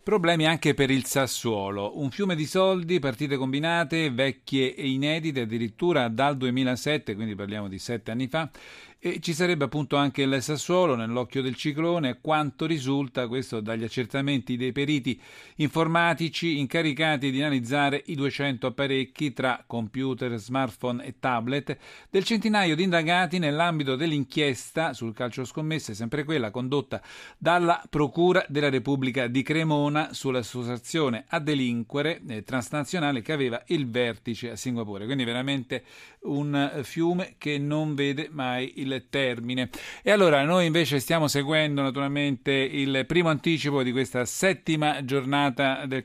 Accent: native